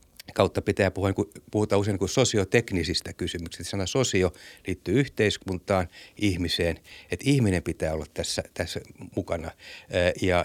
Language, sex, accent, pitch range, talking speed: Finnish, male, native, 90-105 Hz, 120 wpm